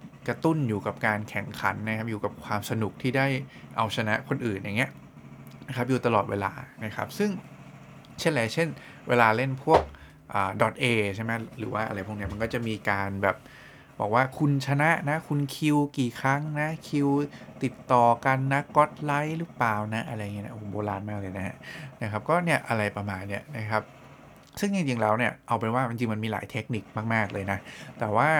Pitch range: 100-135 Hz